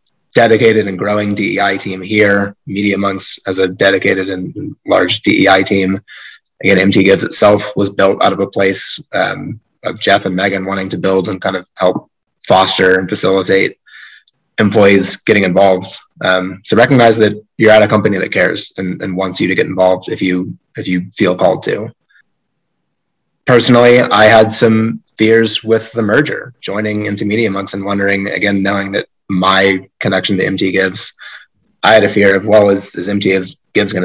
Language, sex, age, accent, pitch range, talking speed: English, male, 30-49, American, 95-105 Hz, 175 wpm